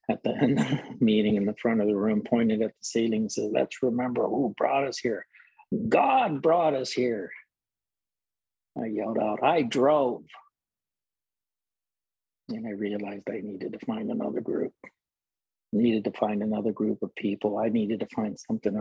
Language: English